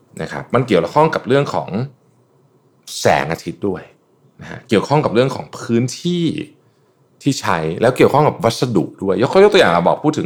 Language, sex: Thai, male